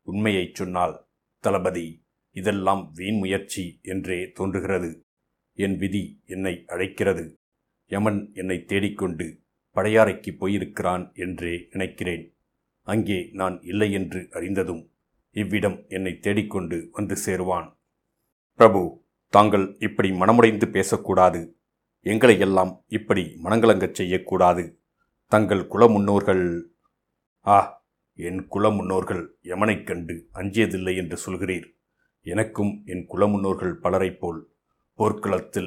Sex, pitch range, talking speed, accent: male, 90-100 Hz, 95 wpm, native